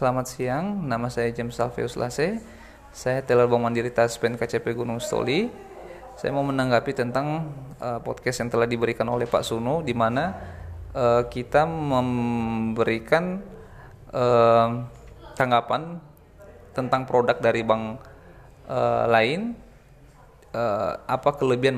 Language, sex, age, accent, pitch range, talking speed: Indonesian, male, 20-39, native, 115-145 Hz, 120 wpm